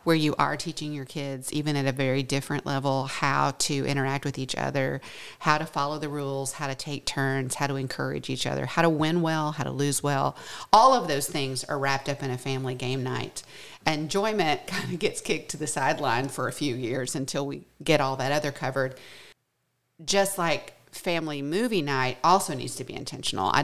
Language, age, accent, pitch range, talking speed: English, 50-69, American, 135-160 Hz, 210 wpm